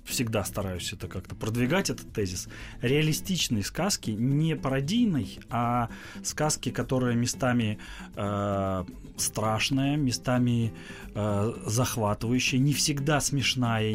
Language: Russian